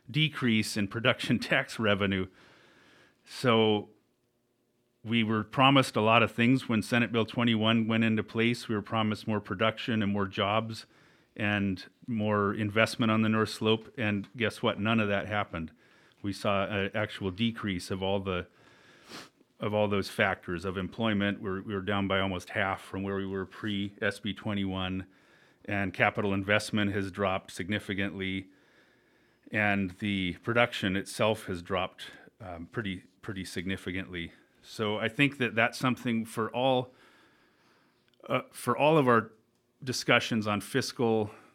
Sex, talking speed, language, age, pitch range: male, 145 wpm, English, 40-59, 100-115 Hz